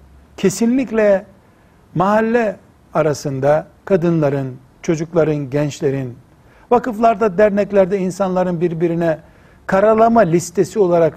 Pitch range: 145-200 Hz